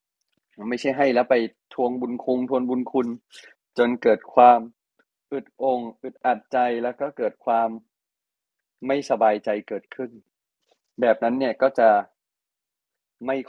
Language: Thai